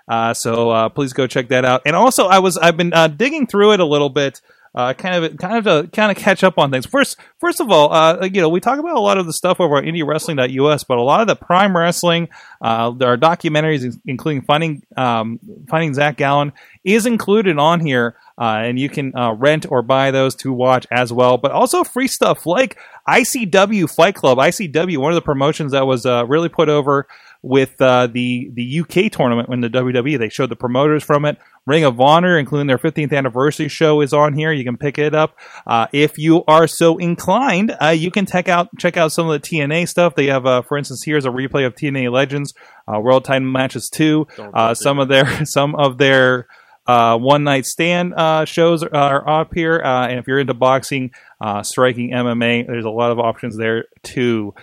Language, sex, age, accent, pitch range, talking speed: English, male, 30-49, American, 130-165 Hz, 225 wpm